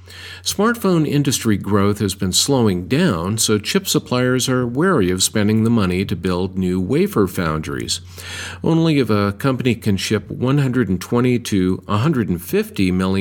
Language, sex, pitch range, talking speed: English, male, 95-135 Hz, 125 wpm